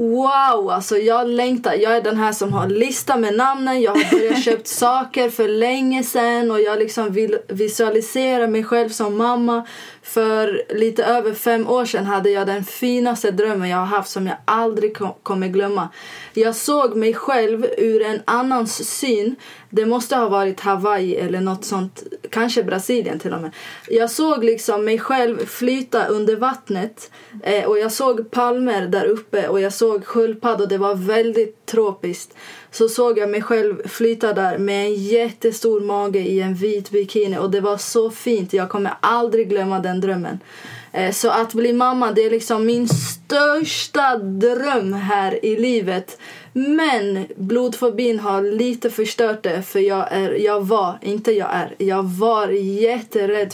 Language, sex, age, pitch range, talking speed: Swedish, female, 20-39, 205-240 Hz, 165 wpm